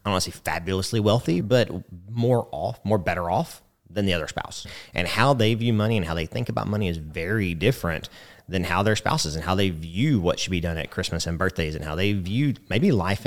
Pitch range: 85-115 Hz